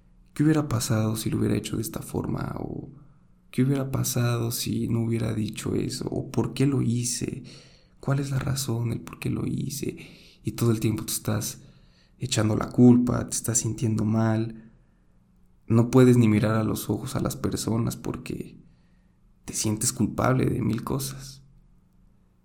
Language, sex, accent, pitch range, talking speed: Spanish, male, Mexican, 105-125 Hz, 170 wpm